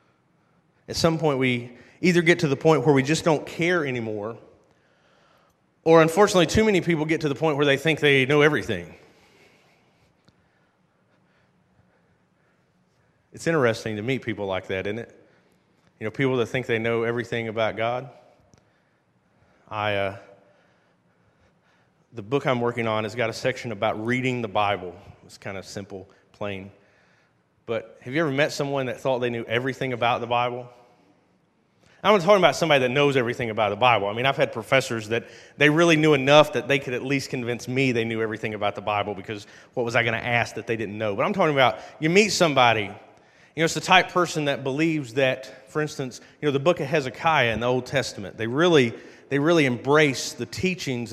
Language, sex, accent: English, male, American